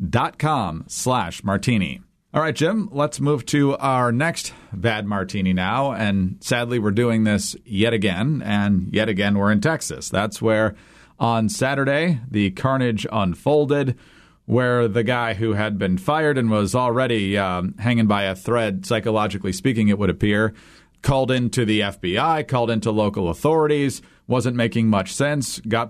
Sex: male